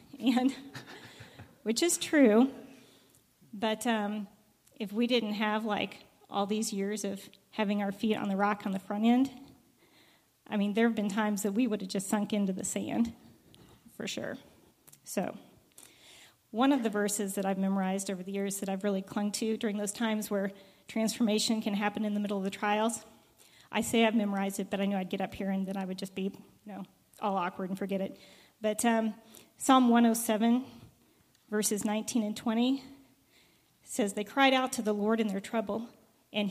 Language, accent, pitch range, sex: English, American, 205-230 Hz, female